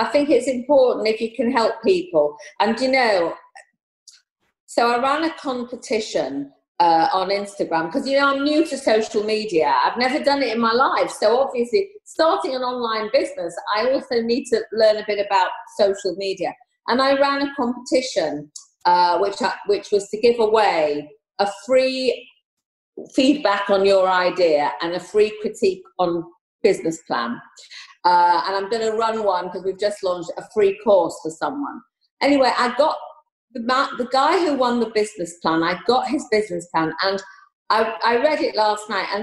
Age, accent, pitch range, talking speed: 40-59, British, 200-275 Hz, 175 wpm